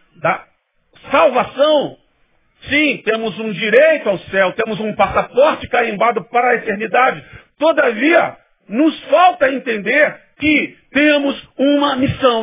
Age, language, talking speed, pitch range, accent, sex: 50-69, Portuguese, 110 wpm, 200-290 Hz, Brazilian, male